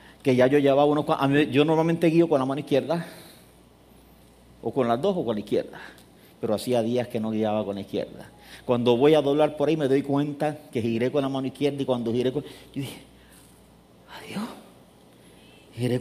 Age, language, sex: 50-69, English, male